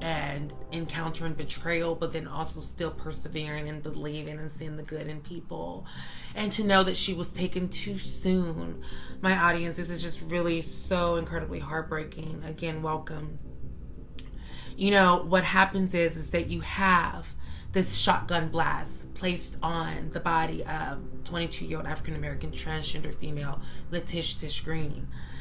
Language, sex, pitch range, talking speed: English, female, 150-185 Hz, 140 wpm